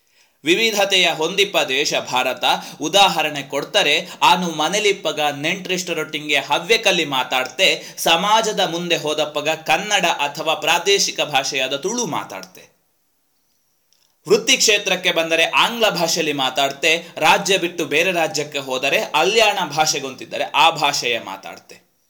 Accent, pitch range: native, 150-205 Hz